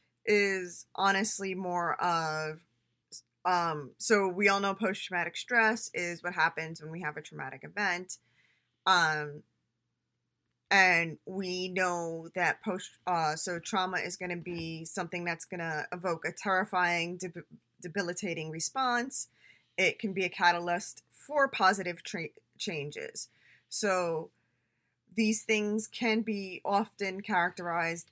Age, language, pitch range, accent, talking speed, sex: 20-39, English, 170-200 Hz, American, 120 wpm, female